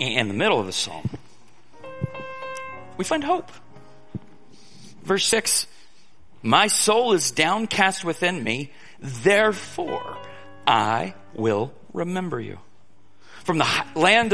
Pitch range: 115-165 Hz